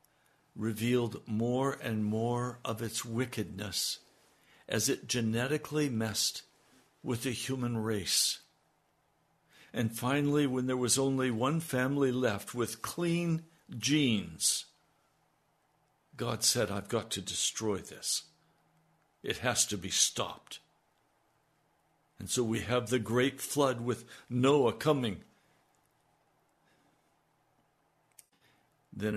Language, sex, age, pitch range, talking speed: English, male, 60-79, 115-155 Hz, 105 wpm